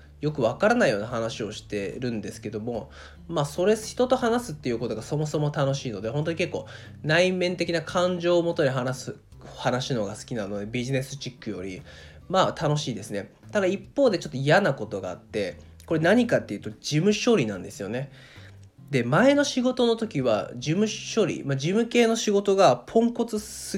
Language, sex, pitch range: Japanese, male, 110-185 Hz